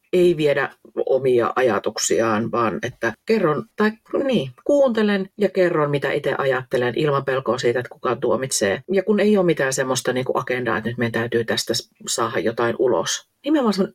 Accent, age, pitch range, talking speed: native, 40-59, 135-185 Hz, 170 wpm